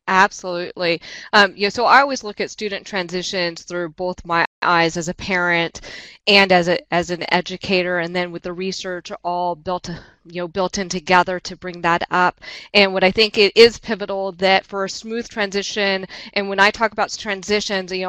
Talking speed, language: 190 wpm, English